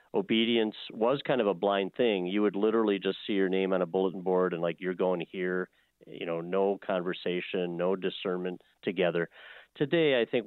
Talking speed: 190 wpm